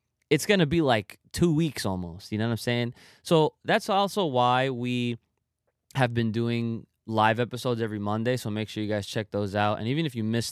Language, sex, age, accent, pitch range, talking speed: English, male, 20-39, American, 100-125 Hz, 215 wpm